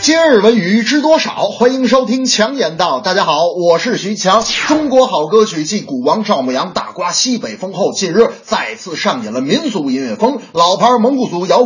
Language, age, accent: Chinese, 30-49, native